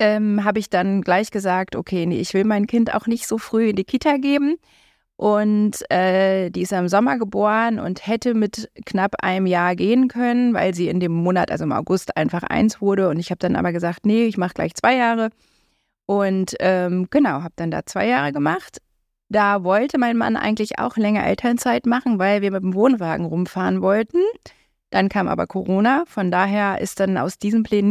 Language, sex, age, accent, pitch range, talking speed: German, female, 30-49, German, 190-235 Hz, 200 wpm